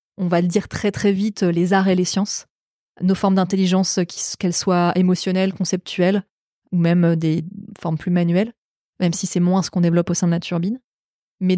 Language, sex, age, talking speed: French, female, 20-39, 195 wpm